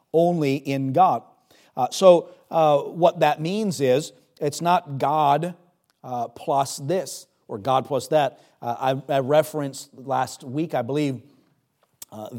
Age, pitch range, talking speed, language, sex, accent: 40-59, 125-145 Hz, 140 wpm, English, male, American